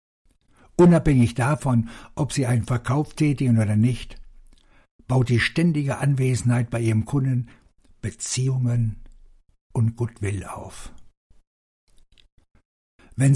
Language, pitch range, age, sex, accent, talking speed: German, 110-135 Hz, 60-79, male, German, 95 wpm